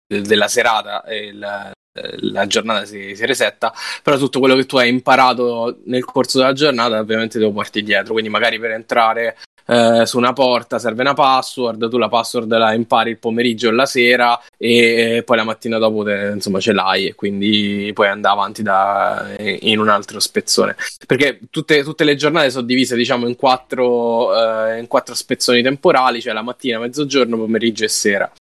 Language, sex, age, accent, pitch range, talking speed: Italian, male, 10-29, native, 110-130 Hz, 170 wpm